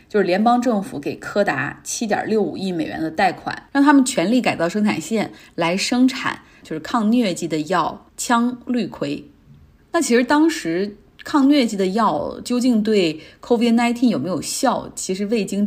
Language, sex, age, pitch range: Chinese, female, 20-39, 170-235 Hz